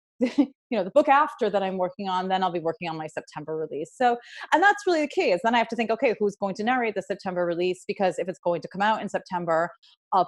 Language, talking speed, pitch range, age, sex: English, 275 wpm, 175-235 Hz, 30-49, female